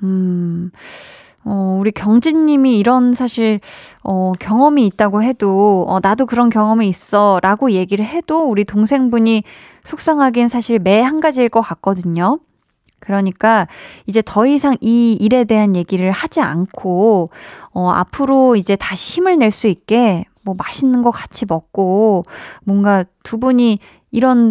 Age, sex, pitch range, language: 20-39, female, 190-250 Hz, Korean